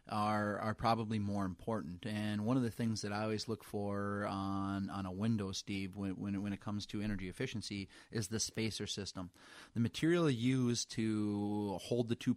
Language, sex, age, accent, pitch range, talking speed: English, male, 30-49, American, 105-120 Hz, 195 wpm